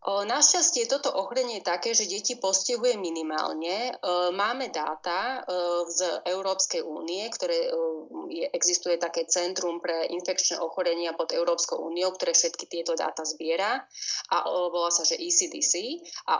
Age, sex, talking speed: 30-49, female, 130 wpm